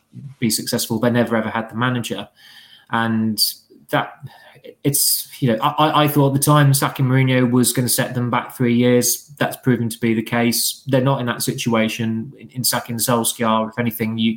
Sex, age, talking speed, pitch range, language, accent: male, 20-39, 195 wpm, 110-125 Hz, English, British